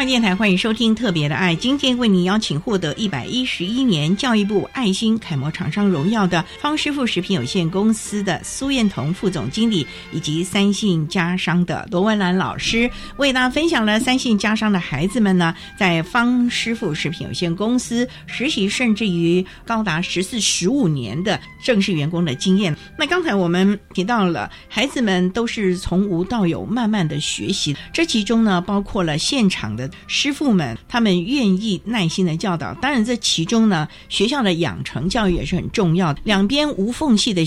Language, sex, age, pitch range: Chinese, female, 50-69, 175-235 Hz